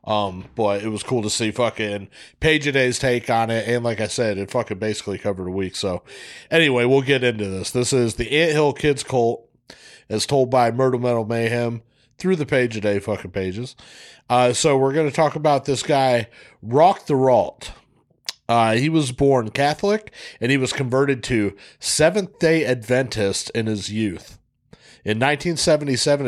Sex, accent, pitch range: male, American, 110-140 Hz